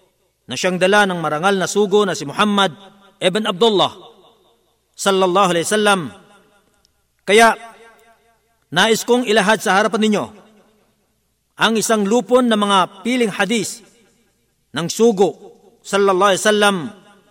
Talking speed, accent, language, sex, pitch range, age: 105 wpm, native, Filipino, male, 185-225 Hz, 50-69